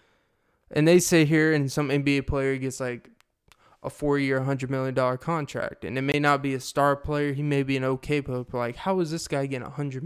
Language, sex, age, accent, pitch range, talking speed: English, male, 20-39, American, 130-160 Hz, 235 wpm